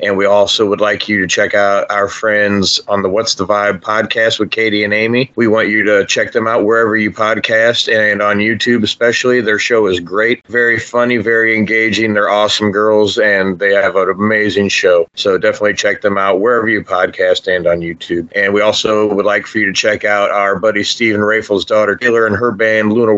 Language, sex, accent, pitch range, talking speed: English, male, American, 100-115 Hz, 215 wpm